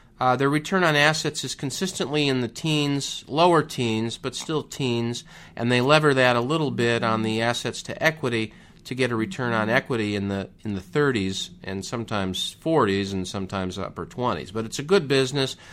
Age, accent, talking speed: 50-69, American, 190 wpm